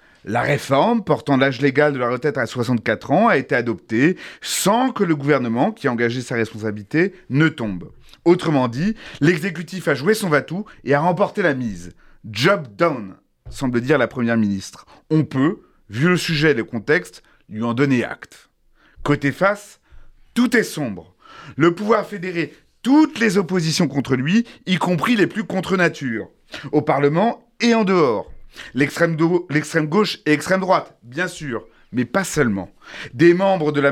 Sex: male